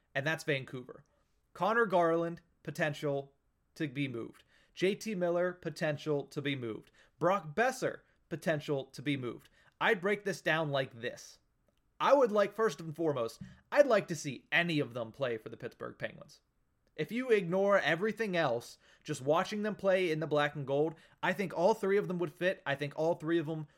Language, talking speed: English, 185 wpm